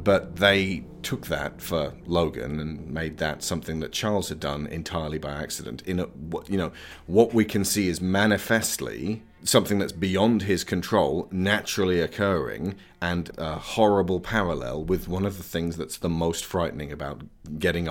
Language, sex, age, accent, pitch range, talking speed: English, male, 40-59, British, 75-95 Hz, 165 wpm